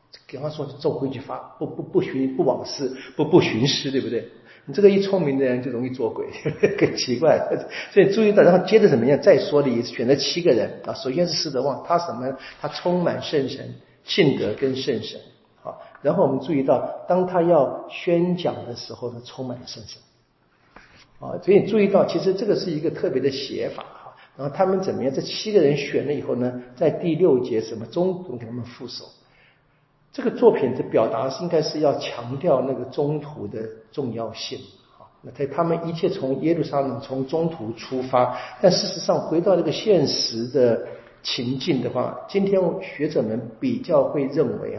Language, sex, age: Chinese, male, 50-69